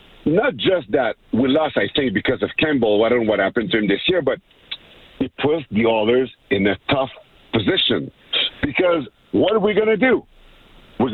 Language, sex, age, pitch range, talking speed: English, male, 50-69, 115-150 Hz, 195 wpm